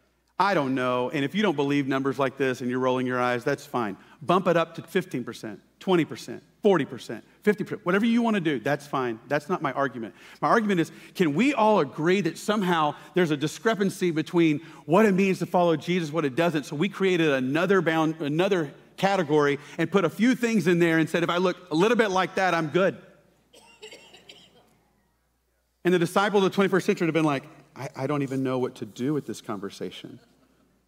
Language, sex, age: English, male, 40-59